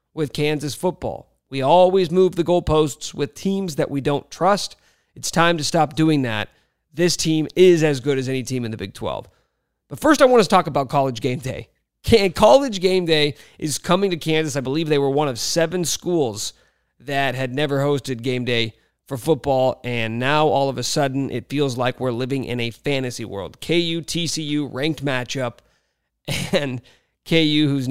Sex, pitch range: male, 130-165 Hz